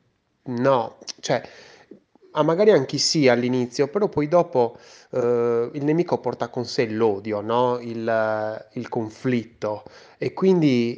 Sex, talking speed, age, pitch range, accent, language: male, 110 wpm, 20-39, 115-135 Hz, native, Italian